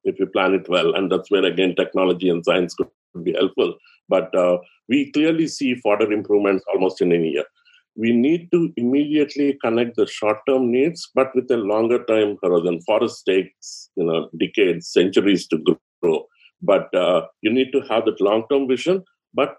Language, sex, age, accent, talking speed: English, male, 50-69, Indian, 180 wpm